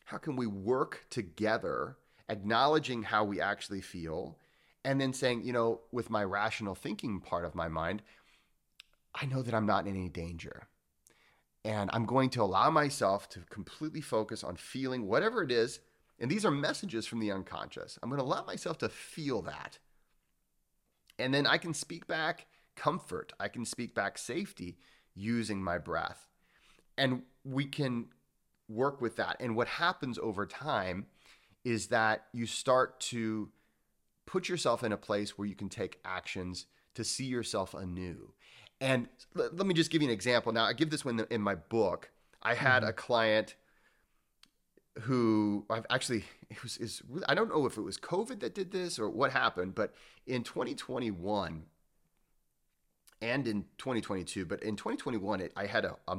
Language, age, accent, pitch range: English, 30-49, American, 100-130 Hz